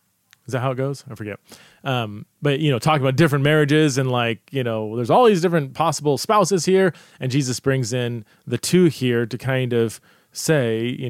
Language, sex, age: English, male, 30-49